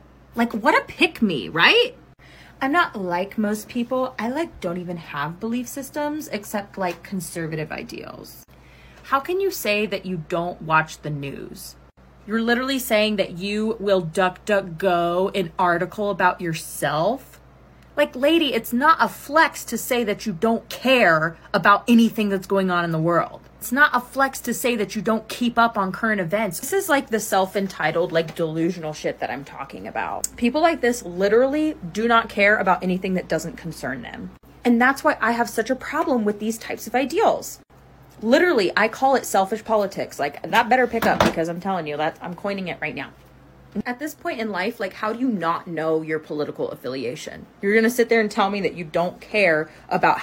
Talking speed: 195 wpm